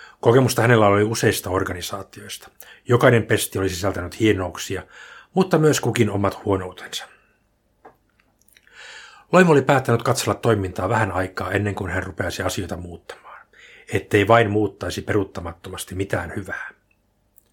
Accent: native